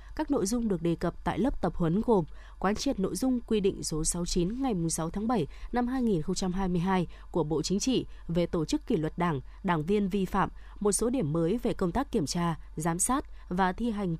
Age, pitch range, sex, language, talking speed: 20-39, 175-225 Hz, female, Vietnamese, 225 wpm